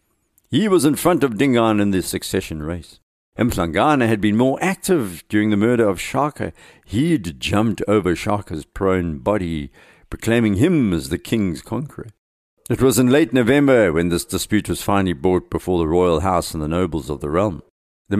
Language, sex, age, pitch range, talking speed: English, male, 60-79, 85-110 Hz, 180 wpm